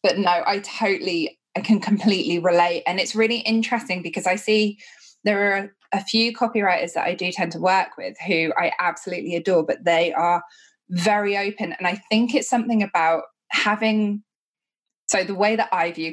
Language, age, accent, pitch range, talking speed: English, 20-39, British, 170-210 Hz, 180 wpm